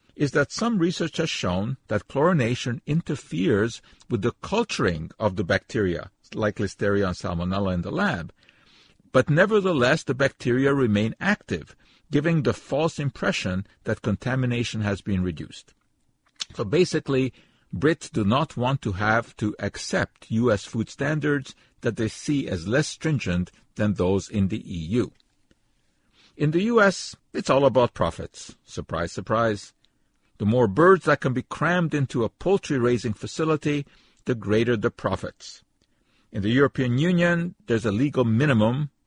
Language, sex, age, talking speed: English, male, 50-69, 145 wpm